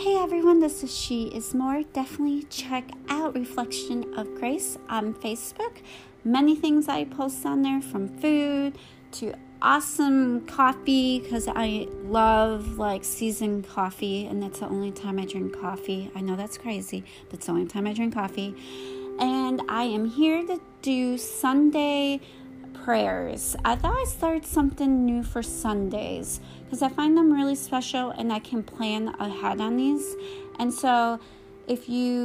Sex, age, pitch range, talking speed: female, 30-49, 200-270 Hz, 160 wpm